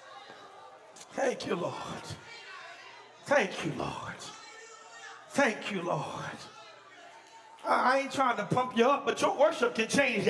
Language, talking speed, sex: English, 120 wpm, male